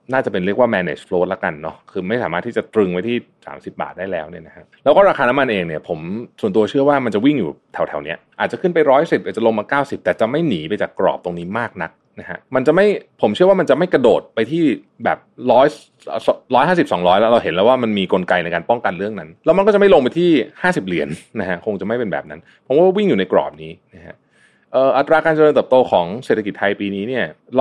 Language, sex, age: Thai, male, 30-49